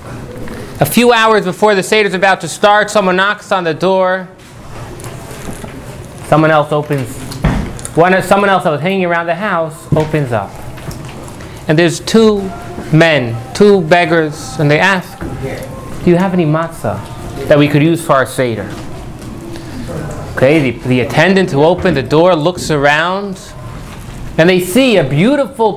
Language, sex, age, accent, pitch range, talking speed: English, male, 30-49, American, 125-185 Hz, 150 wpm